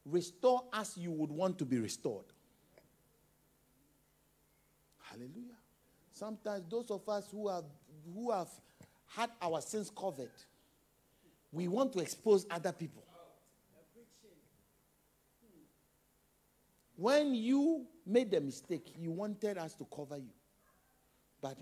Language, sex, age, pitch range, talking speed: English, male, 60-79, 135-190 Hz, 110 wpm